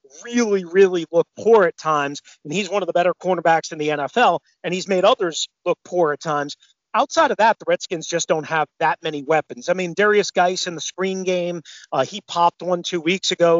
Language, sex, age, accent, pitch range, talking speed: English, male, 40-59, American, 160-200 Hz, 220 wpm